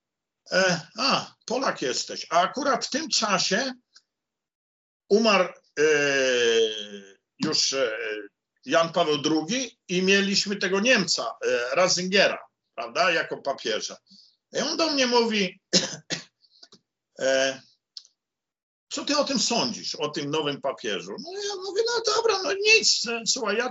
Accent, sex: native, male